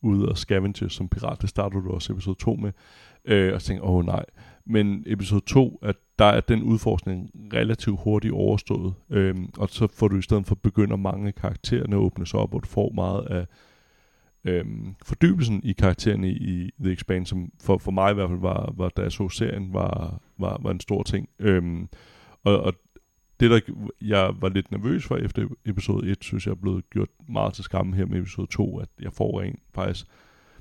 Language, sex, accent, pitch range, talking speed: Danish, male, native, 90-105 Hz, 205 wpm